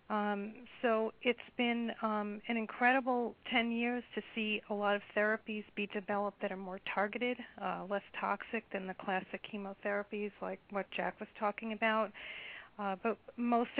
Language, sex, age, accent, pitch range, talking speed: English, female, 40-59, American, 195-220 Hz, 160 wpm